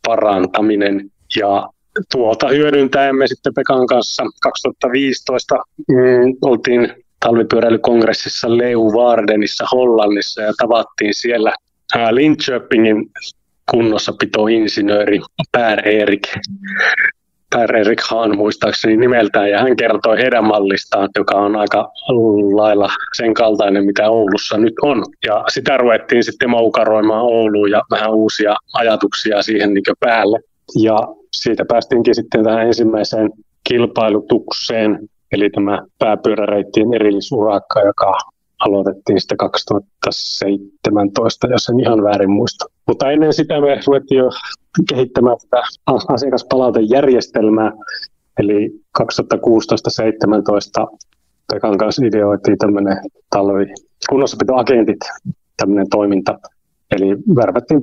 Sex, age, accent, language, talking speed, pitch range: male, 30-49, native, Finnish, 95 wpm, 100-120 Hz